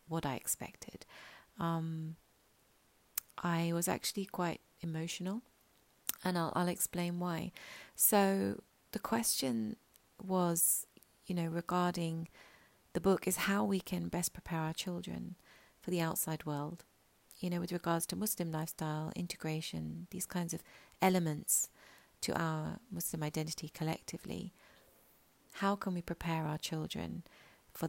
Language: English